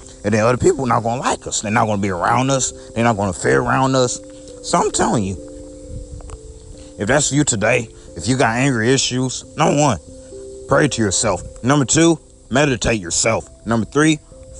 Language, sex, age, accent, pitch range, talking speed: English, male, 30-49, American, 90-135 Hz, 195 wpm